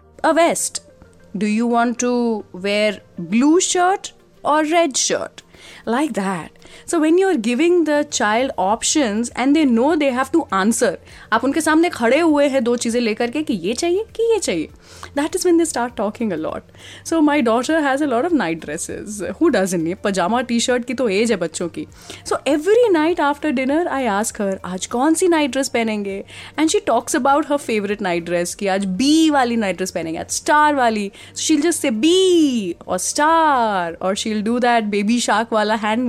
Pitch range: 210-300 Hz